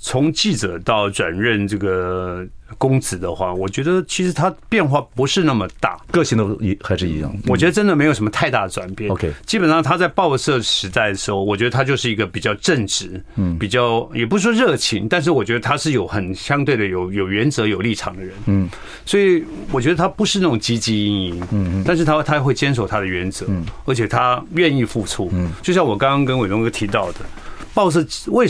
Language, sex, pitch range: Chinese, male, 105-155 Hz